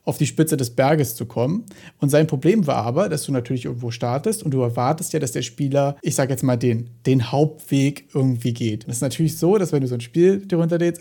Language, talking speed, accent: German, 245 wpm, German